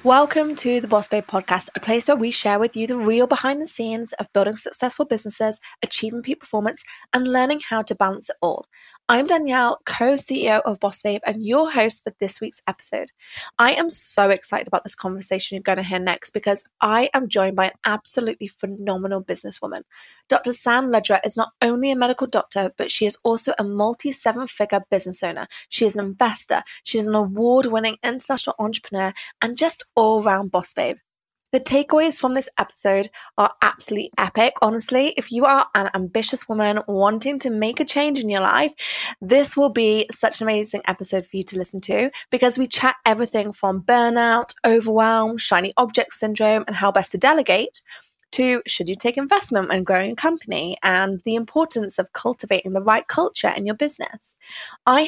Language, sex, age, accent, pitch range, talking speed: English, female, 20-39, British, 205-255 Hz, 185 wpm